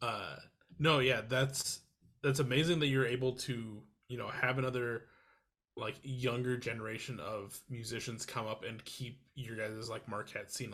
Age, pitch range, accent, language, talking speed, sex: 20-39, 110-130 Hz, American, English, 155 wpm, male